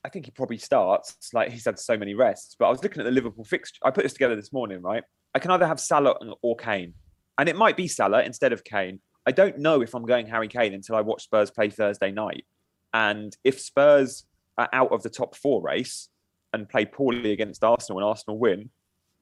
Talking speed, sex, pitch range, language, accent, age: 230 wpm, male, 100-135 Hz, English, British, 20-39